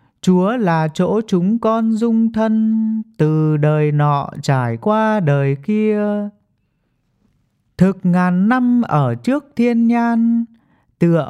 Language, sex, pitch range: English, male, 150-220 Hz